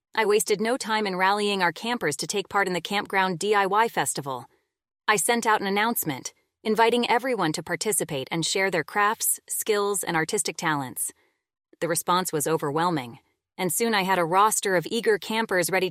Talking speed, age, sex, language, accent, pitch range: 175 wpm, 30-49, female, English, American, 180-230 Hz